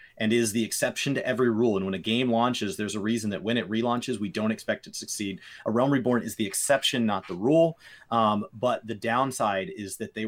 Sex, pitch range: male, 105-125 Hz